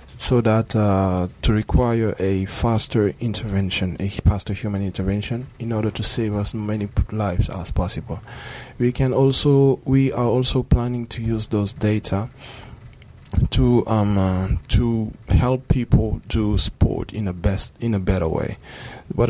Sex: male